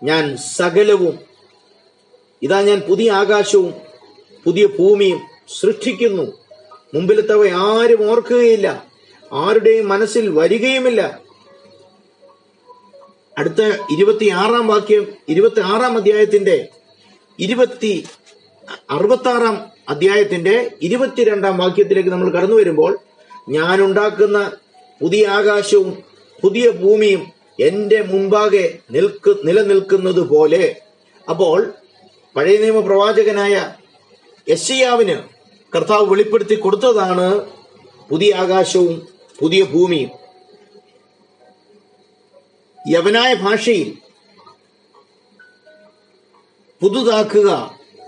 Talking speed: 70 wpm